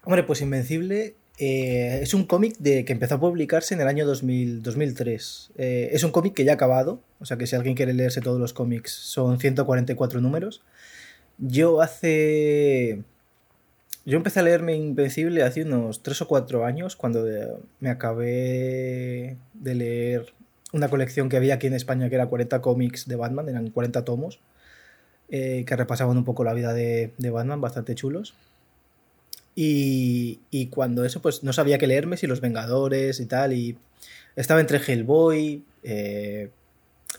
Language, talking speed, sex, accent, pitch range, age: Spanish, 170 wpm, male, Spanish, 120-145 Hz, 20-39